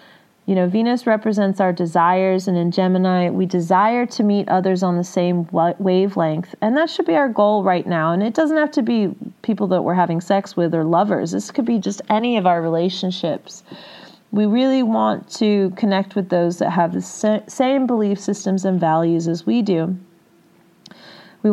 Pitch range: 180-220 Hz